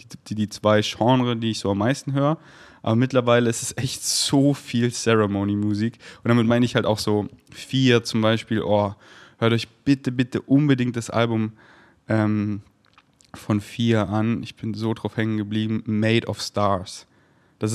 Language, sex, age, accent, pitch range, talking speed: German, male, 20-39, German, 110-130 Hz, 170 wpm